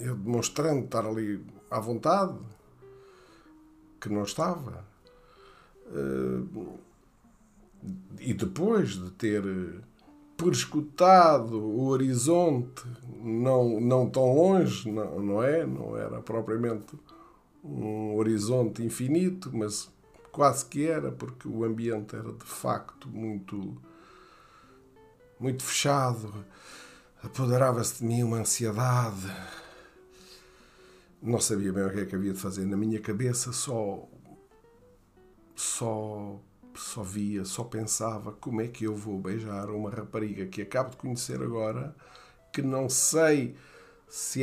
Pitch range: 105-130 Hz